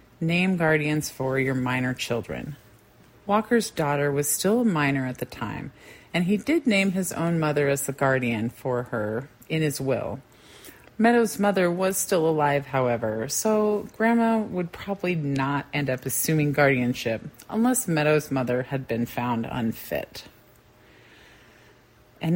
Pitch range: 135-200 Hz